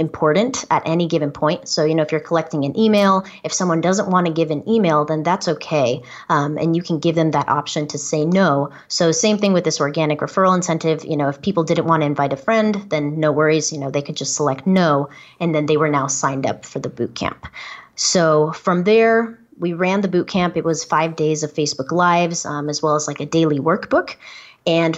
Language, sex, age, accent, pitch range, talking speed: English, female, 30-49, American, 150-175 Hz, 230 wpm